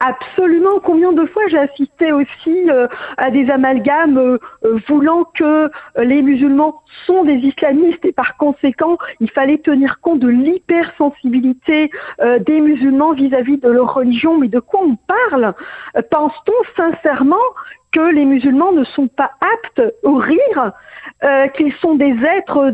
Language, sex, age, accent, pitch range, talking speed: French, female, 50-69, French, 265-335 Hz, 135 wpm